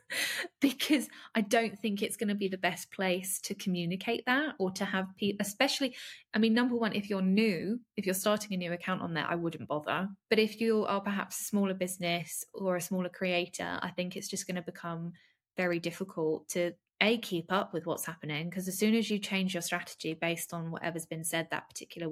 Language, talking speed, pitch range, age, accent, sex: English, 215 wpm, 185-225 Hz, 20-39, British, female